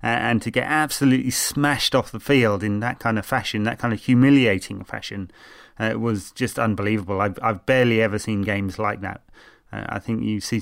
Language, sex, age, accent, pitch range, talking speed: English, male, 30-49, British, 100-125 Hz, 200 wpm